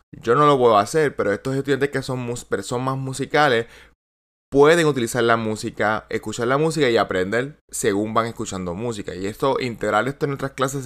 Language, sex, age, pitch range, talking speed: Spanish, male, 20-39, 110-140 Hz, 175 wpm